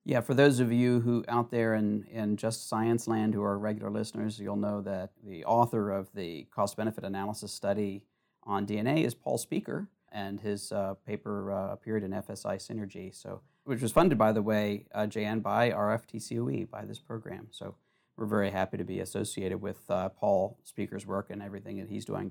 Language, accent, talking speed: English, American, 195 wpm